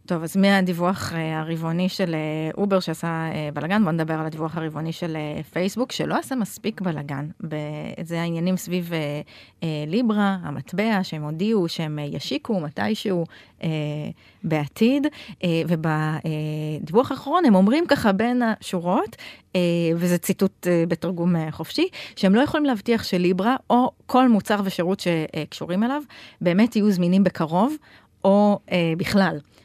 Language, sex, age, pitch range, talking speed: Hebrew, female, 30-49, 160-205 Hz, 115 wpm